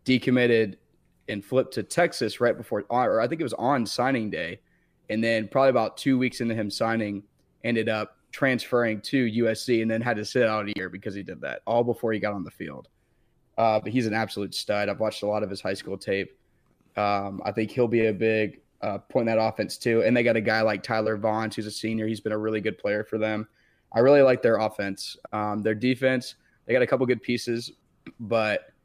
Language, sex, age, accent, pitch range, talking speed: English, male, 20-39, American, 105-120 Hz, 230 wpm